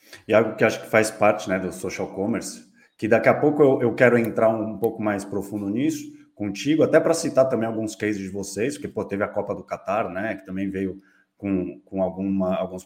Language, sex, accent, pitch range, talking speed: Portuguese, male, Brazilian, 100-150 Hz, 225 wpm